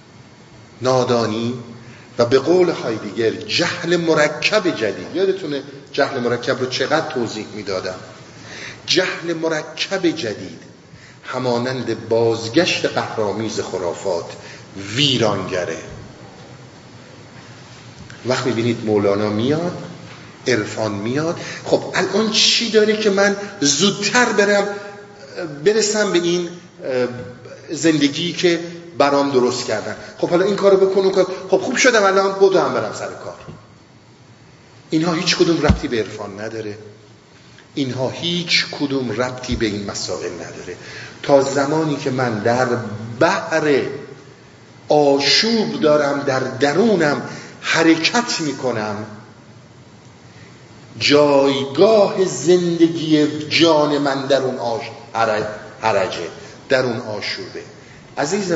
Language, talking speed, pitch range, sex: Persian, 105 wpm, 120-175 Hz, male